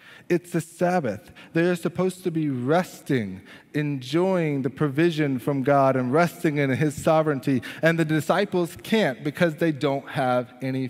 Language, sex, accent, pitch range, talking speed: English, male, American, 120-160 Hz, 155 wpm